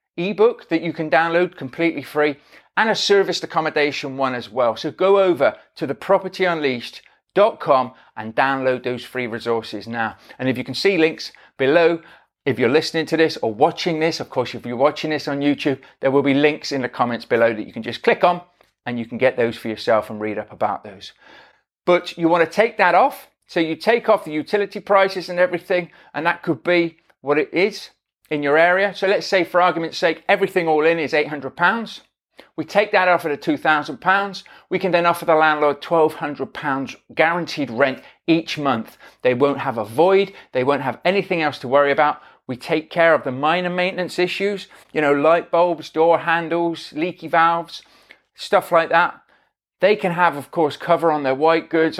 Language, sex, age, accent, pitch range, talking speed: English, male, 40-59, British, 140-175 Hz, 200 wpm